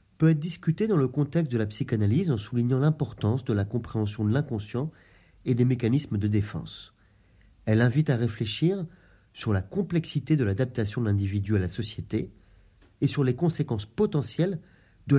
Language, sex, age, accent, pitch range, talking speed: French, male, 40-59, French, 100-145 Hz, 165 wpm